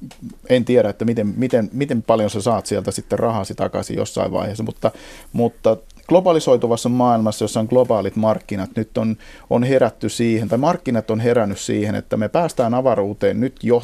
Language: Finnish